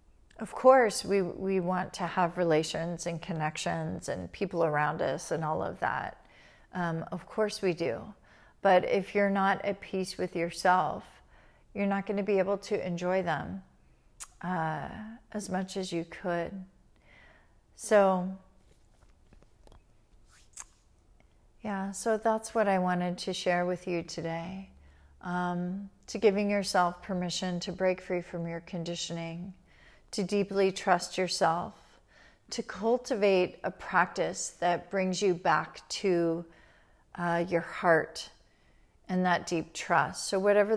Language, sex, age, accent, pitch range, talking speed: English, female, 40-59, American, 170-195 Hz, 135 wpm